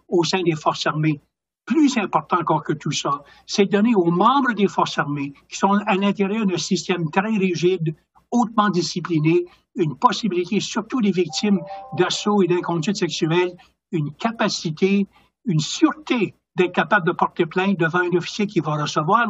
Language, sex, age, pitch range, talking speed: French, male, 60-79, 170-200 Hz, 160 wpm